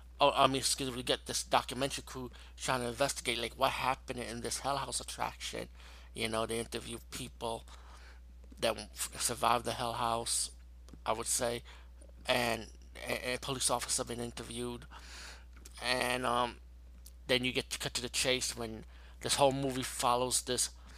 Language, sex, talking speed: English, male, 165 wpm